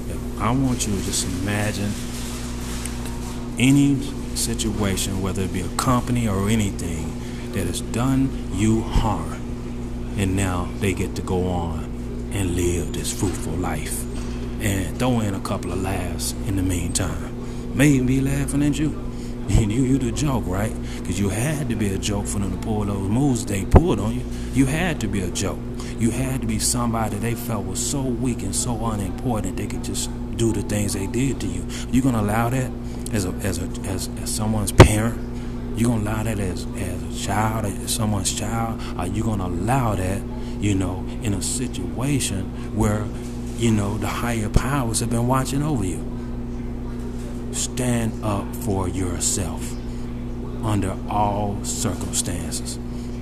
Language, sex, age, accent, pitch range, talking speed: English, male, 30-49, American, 100-120 Hz, 175 wpm